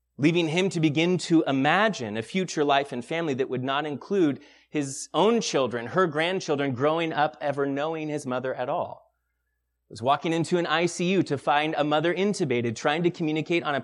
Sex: male